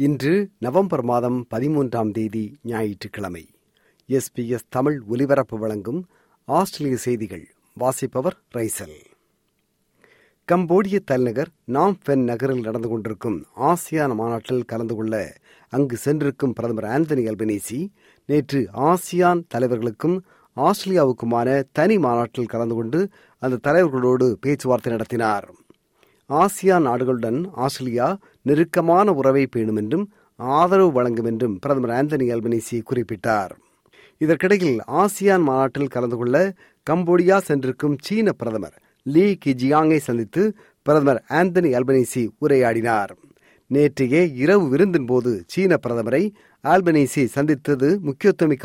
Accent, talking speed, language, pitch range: native, 95 wpm, Tamil, 120-165 Hz